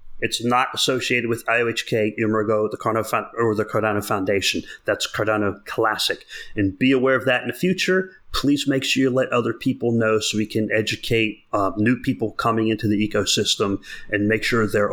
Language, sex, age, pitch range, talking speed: English, male, 40-59, 110-135 Hz, 190 wpm